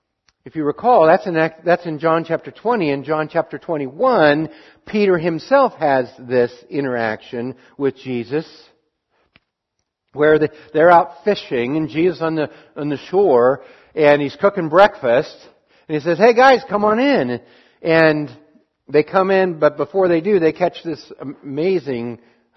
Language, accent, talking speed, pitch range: English, American, 150 wpm, 130-170 Hz